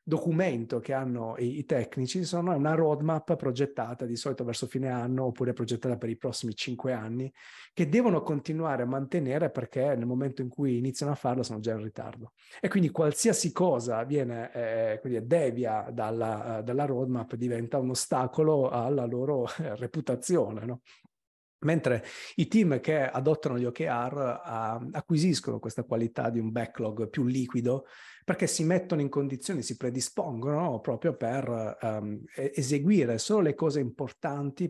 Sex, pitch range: male, 115-140 Hz